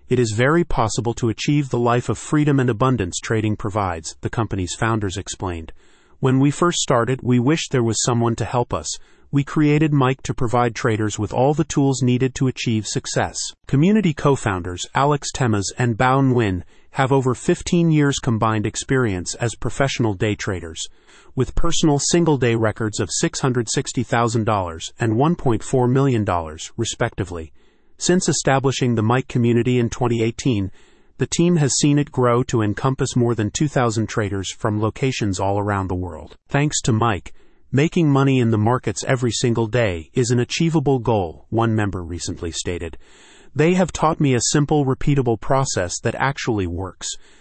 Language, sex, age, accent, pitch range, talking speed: English, male, 30-49, American, 110-135 Hz, 160 wpm